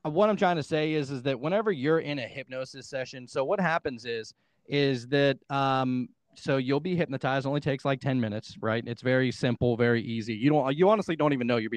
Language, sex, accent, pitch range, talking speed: English, male, American, 130-160 Hz, 225 wpm